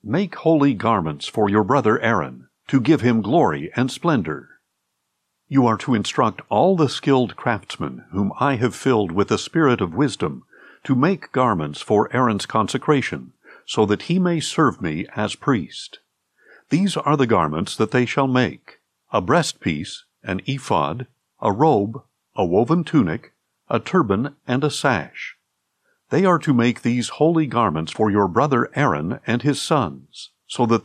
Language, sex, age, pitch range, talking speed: English, male, 60-79, 110-145 Hz, 160 wpm